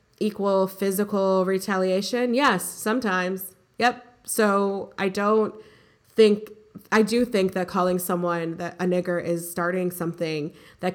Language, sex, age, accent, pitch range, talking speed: English, female, 20-39, American, 175-225 Hz, 125 wpm